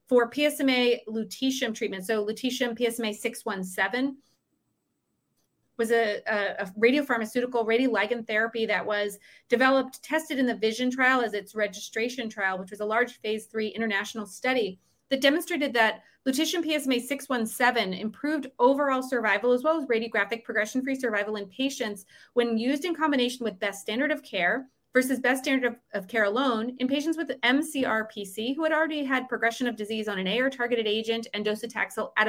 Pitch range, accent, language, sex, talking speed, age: 205-260 Hz, American, English, female, 155 wpm, 30-49